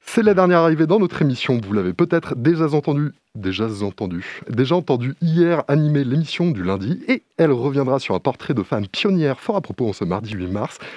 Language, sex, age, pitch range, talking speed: French, male, 20-39, 110-170 Hz, 210 wpm